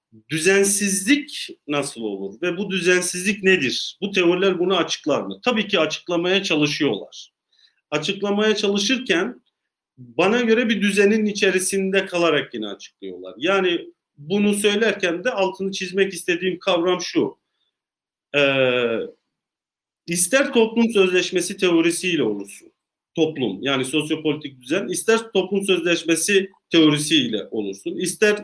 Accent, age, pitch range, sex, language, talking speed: native, 40-59, 155-205 Hz, male, Turkish, 110 wpm